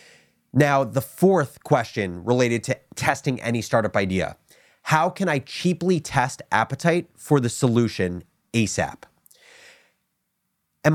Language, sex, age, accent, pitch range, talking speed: English, male, 30-49, American, 110-155 Hz, 115 wpm